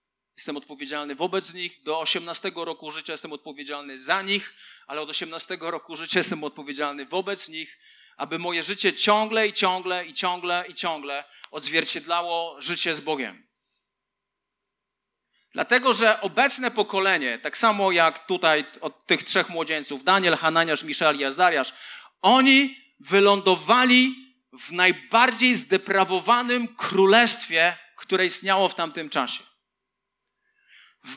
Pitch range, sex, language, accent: 170-230 Hz, male, Polish, native